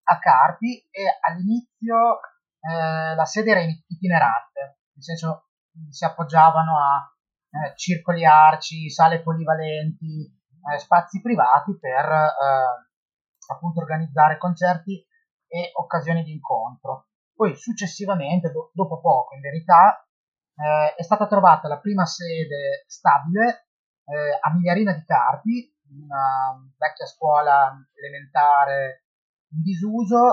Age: 30-49